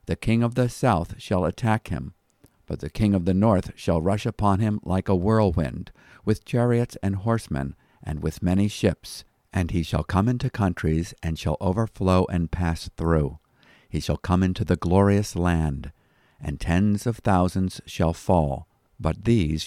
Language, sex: English, male